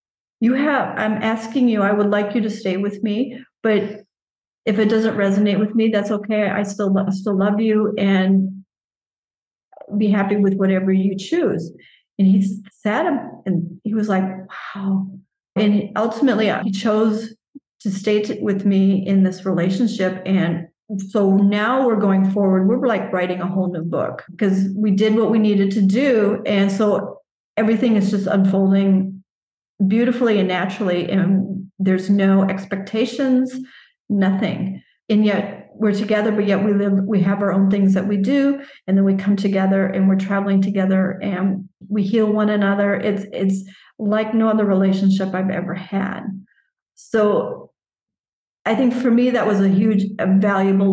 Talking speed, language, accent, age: 165 wpm, English, American, 40-59